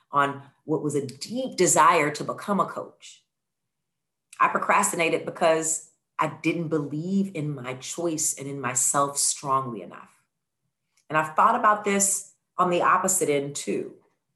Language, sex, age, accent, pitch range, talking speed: English, female, 40-59, American, 140-180 Hz, 140 wpm